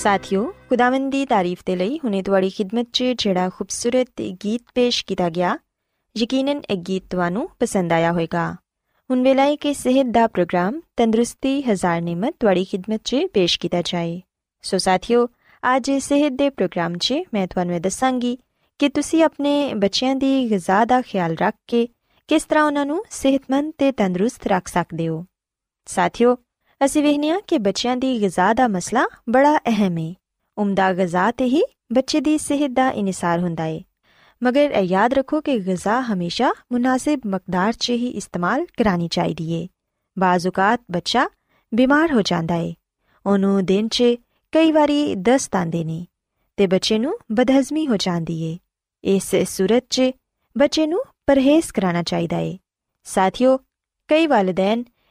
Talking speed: 135 wpm